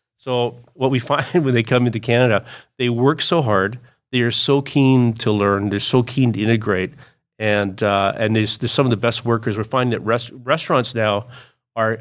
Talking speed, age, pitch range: 200 wpm, 40-59, 105-125 Hz